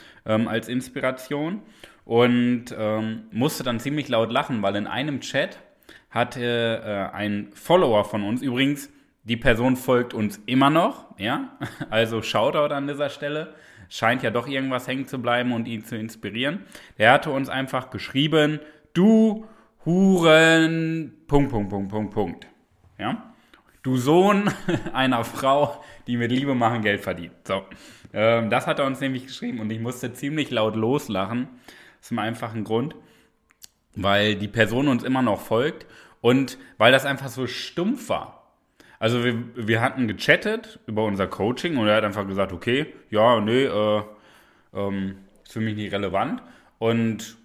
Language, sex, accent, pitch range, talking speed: German, male, German, 110-140 Hz, 150 wpm